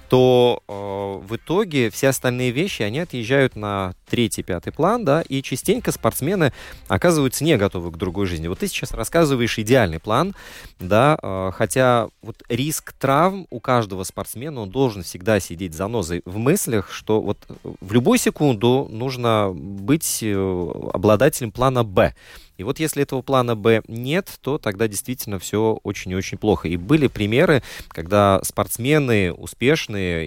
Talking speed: 155 wpm